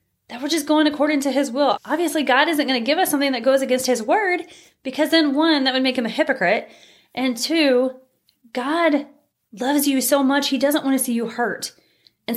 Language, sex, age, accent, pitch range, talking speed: English, female, 20-39, American, 235-305 Hz, 220 wpm